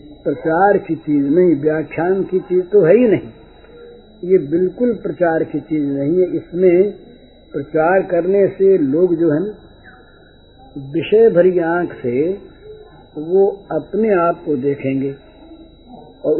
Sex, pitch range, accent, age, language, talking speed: male, 160-215 Hz, native, 60-79, Hindi, 130 wpm